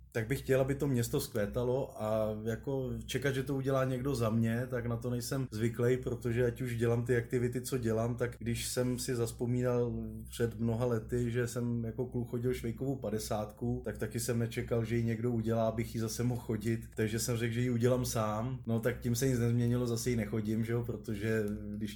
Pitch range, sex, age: 110-125 Hz, male, 20-39